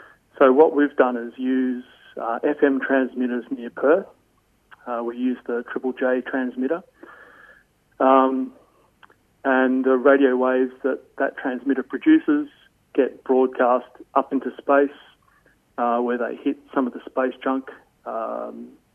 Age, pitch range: 30-49, 120-135 Hz